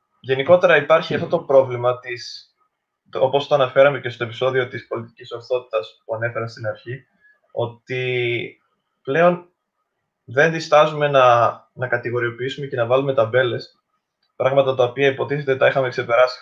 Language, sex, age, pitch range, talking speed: Greek, male, 20-39, 125-145 Hz, 135 wpm